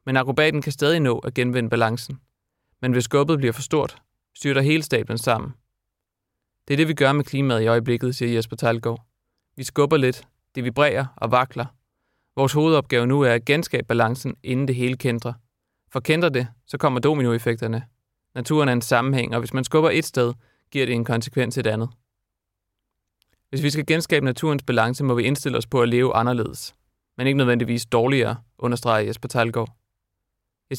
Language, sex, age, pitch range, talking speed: Danish, male, 30-49, 115-140 Hz, 180 wpm